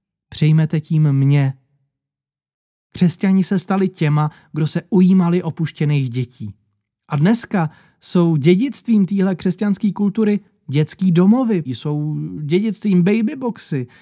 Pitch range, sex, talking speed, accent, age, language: 130-185 Hz, male, 105 wpm, native, 20-39, Czech